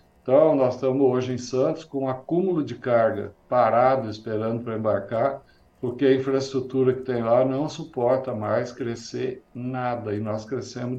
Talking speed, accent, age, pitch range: 155 wpm, Brazilian, 60-79, 115-135 Hz